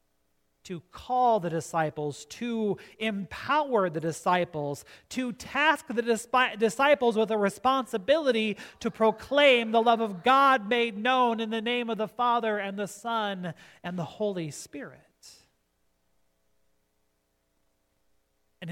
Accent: American